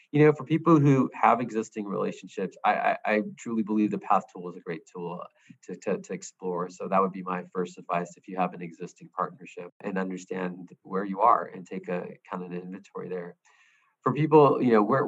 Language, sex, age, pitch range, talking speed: English, male, 20-39, 95-120 Hz, 220 wpm